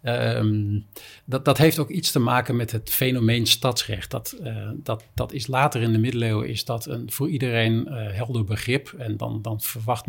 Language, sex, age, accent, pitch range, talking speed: Dutch, male, 50-69, Dutch, 110-125 Hz, 195 wpm